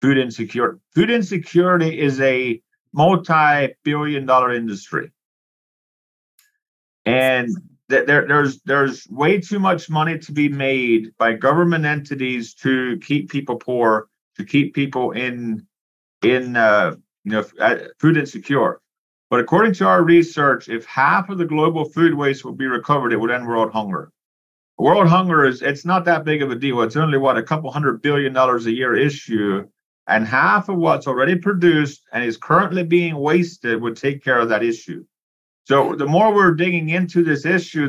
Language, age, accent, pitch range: English, 50-69, American, 130-170 Hz